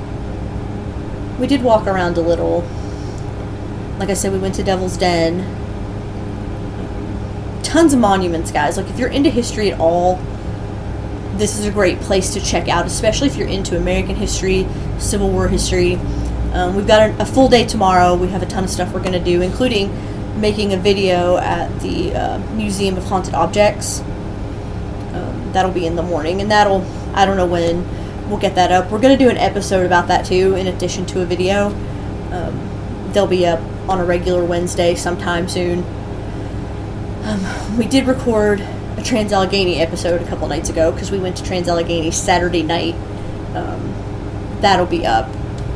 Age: 30-49